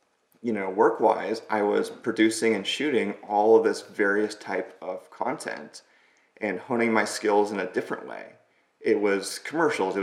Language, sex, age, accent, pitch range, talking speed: English, male, 30-49, American, 100-115 Hz, 160 wpm